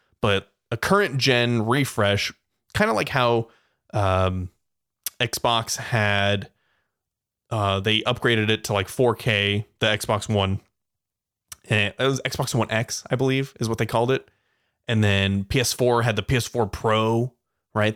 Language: English